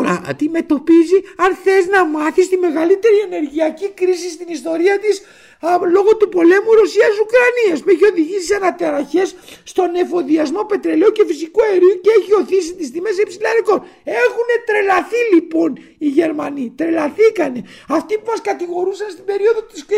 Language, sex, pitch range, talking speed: Greek, male, 335-440 Hz, 135 wpm